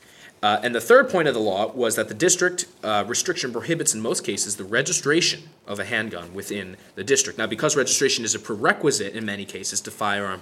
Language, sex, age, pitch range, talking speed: English, male, 20-39, 105-145 Hz, 215 wpm